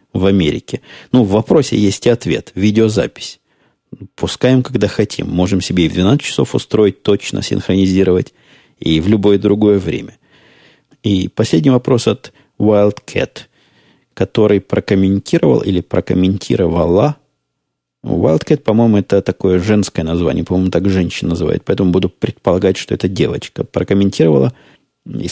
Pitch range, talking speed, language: 90-110 Hz, 125 wpm, Russian